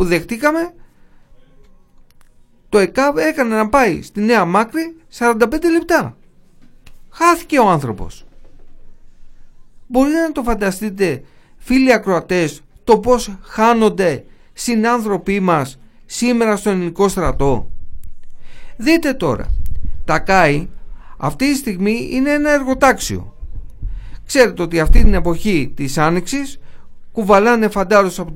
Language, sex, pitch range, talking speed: Greek, male, 160-260 Hz, 105 wpm